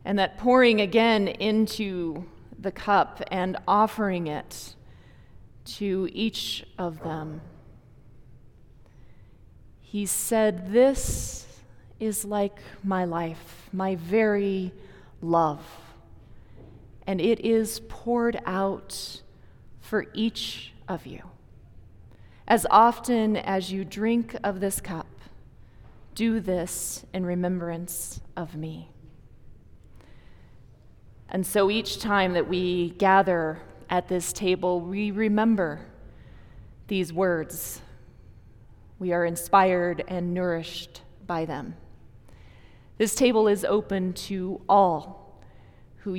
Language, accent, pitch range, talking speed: English, American, 155-205 Hz, 95 wpm